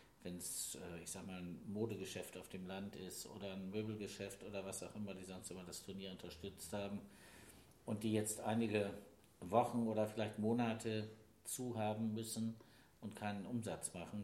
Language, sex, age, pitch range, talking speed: German, male, 50-69, 90-110 Hz, 150 wpm